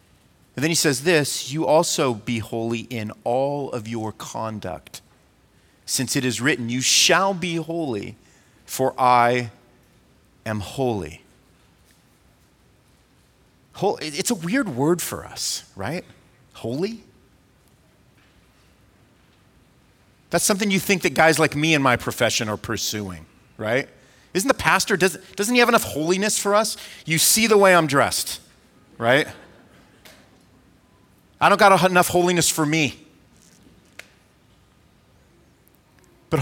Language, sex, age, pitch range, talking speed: English, male, 30-49, 125-195 Hz, 120 wpm